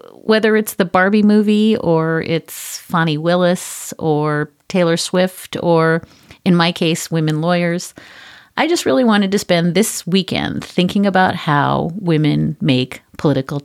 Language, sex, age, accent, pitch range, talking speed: English, female, 40-59, American, 150-195 Hz, 140 wpm